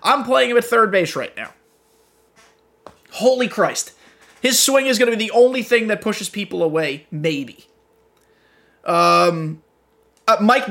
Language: English